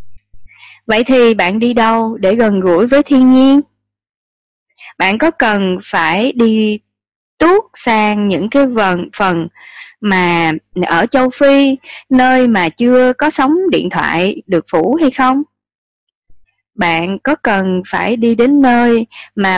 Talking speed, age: 140 wpm, 20-39